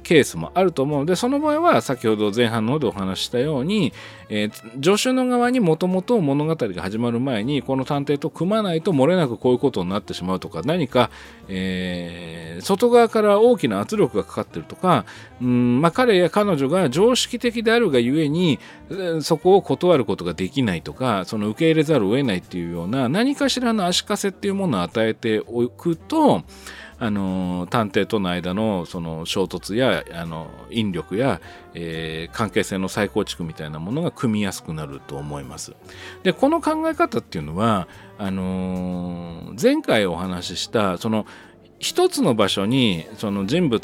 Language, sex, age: Japanese, male, 40-59